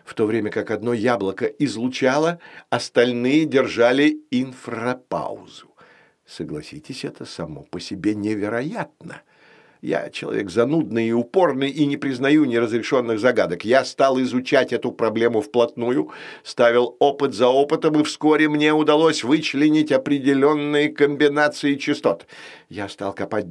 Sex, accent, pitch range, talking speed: male, native, 120-150 Hz, 120 wpm